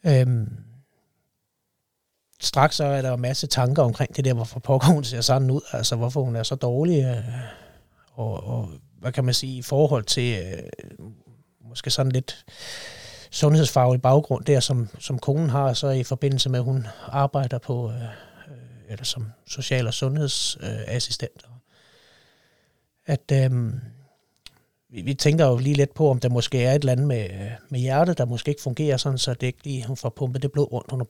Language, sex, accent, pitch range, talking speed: Danish, male, native, 120-140 Hz, 180 wpm